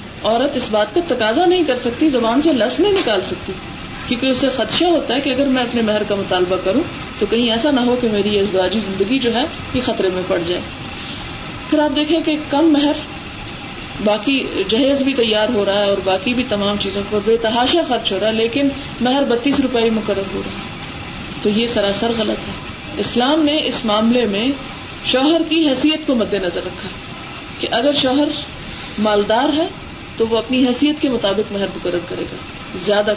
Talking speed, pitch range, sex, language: 195 wpm, 210-280 Hz, female, Urdu